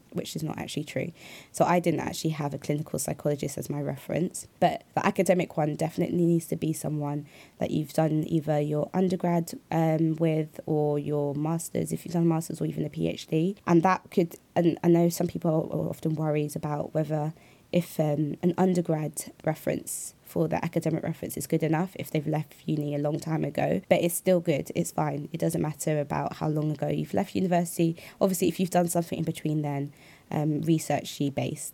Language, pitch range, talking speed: English, 150-170 Hz, 200 wpm